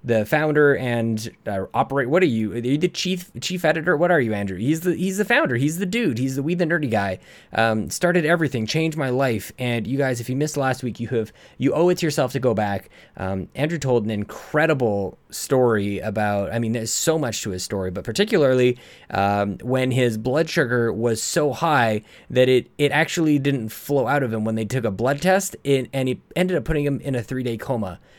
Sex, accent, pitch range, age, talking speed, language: male, American, 110-150 Hz, 20-39, 230 wpm, English